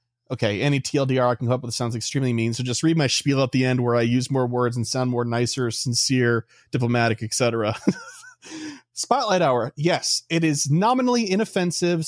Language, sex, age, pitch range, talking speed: English, male, 30-49, 125-170 Hz, 190 wpm